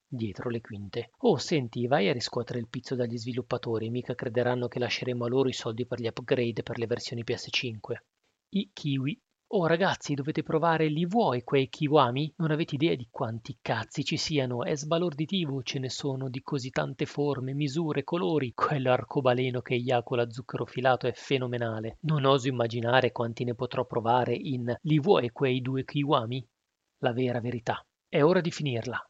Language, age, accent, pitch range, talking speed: Italian, 40-59, native, 120-155 Hz, 175 wpm